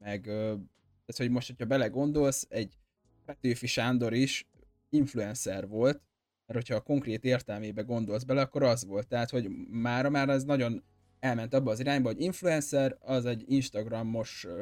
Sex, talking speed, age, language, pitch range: male, 150 wpm, 20-39, Hungarian, 110-130 Hz